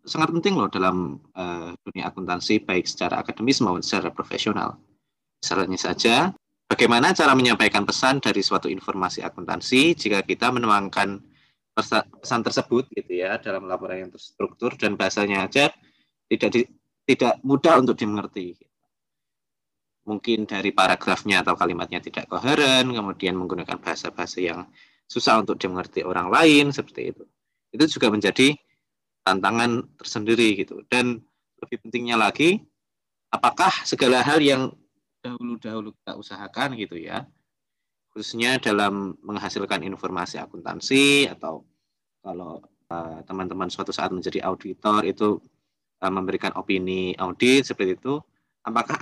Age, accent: 20-39, native